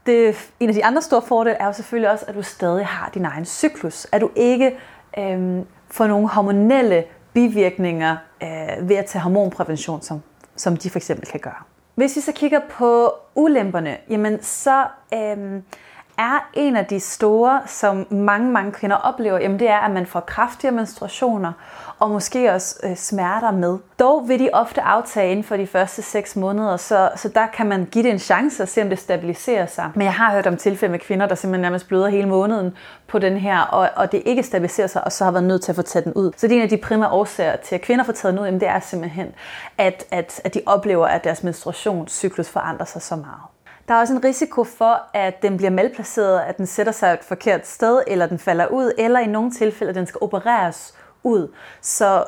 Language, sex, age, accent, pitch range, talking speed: Danish, female, 30-49, native, 185-230 Hz, 215 wpm